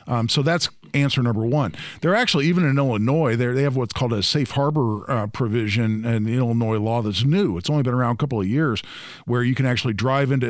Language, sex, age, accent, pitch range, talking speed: English, male, 50-69, American, 115-140 Hz, 230 wpm